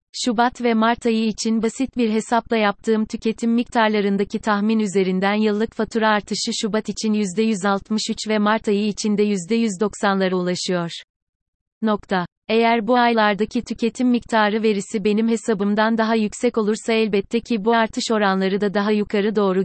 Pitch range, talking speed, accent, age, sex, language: 195-225 Hz, 145 wpm, native, 30-49, female, Turkish